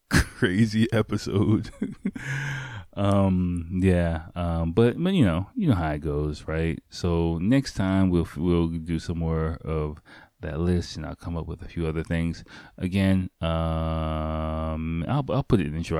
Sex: male